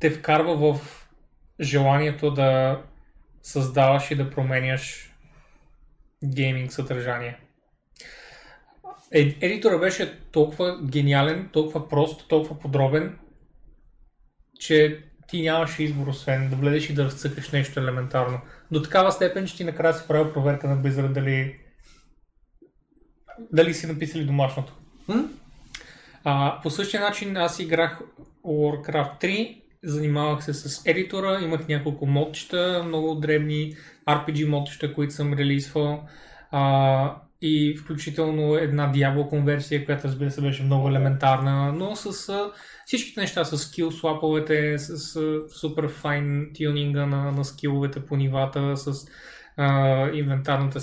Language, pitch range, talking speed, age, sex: Bulgarian, 140-160 Hz, 110 wpm, 30-49, male